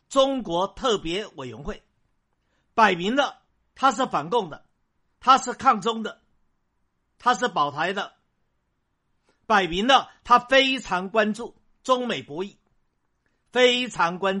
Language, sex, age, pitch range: Chinese, male, 50-69, 180-255 Hz